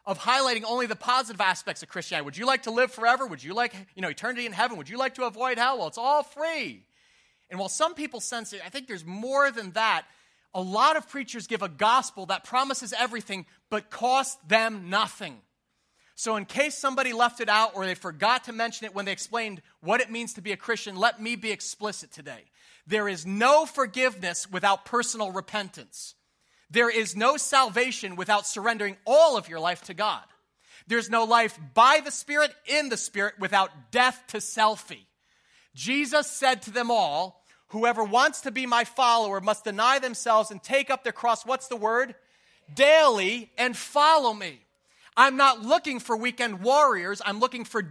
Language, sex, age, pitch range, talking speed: English, male, 30-49, 205-260 Hz, 190 wpm